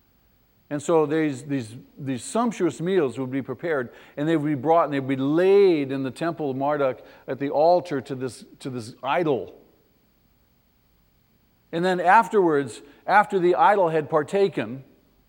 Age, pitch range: 50-69, 130-180 Hz